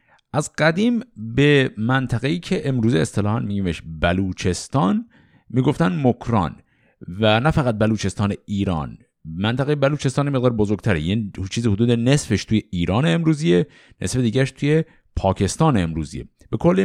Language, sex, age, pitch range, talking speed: Persian, male, 50-69, 110-165 Hz, 120 wpm